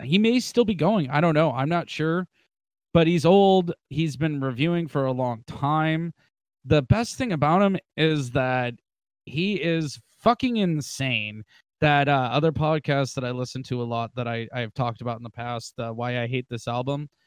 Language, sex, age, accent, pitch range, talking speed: English, male, 20-39, American, 130-170 Hz, 195 wpm